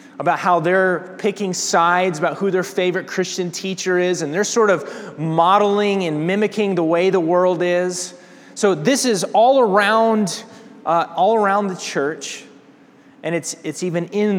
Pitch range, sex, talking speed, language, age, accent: 140-200 Hz, male, 165 wpm, English, 20-39, American